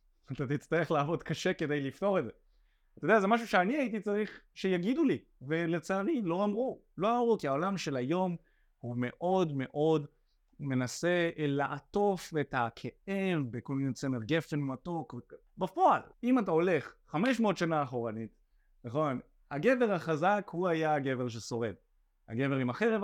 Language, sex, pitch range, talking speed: Hebrew, male, 135-205 Hz, 145 wpm